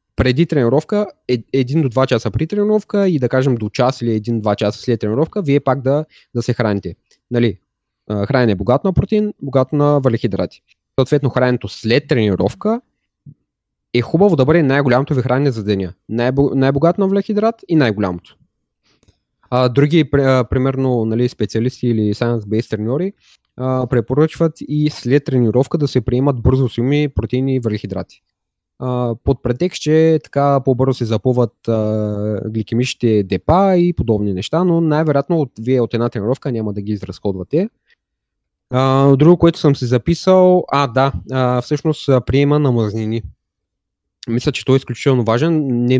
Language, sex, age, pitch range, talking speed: Bulgarian, male, 20-39, 110-145 Hz, 150 wpm